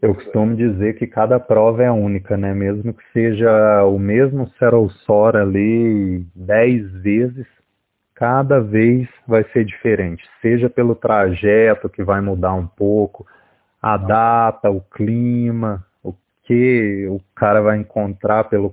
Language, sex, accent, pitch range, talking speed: Portuguese, male, Brazilian, 100-125 Hz, 135 wpm